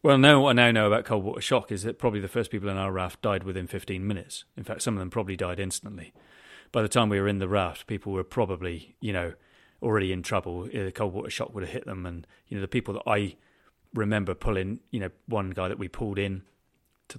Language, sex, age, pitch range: English, male, 30-49, 95-110 Hz